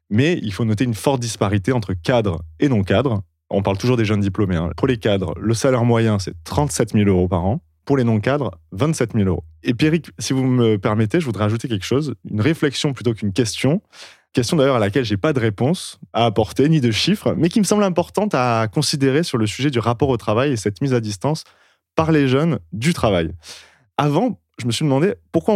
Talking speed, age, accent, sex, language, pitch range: 225 wpm, 20-39, French, male, French, 100-140 Hz